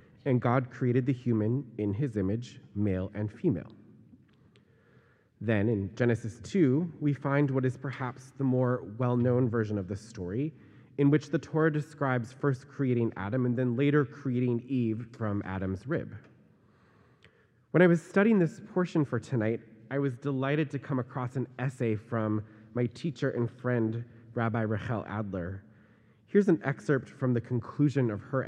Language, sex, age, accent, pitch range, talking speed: English, male, 30-49, American, 110-135 Hz, 160 wpm